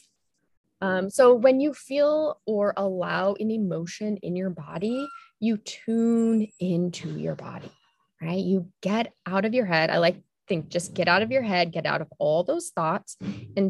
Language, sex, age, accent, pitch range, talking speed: English, female, 20-39, American, 170-225 Hz, 175 wpm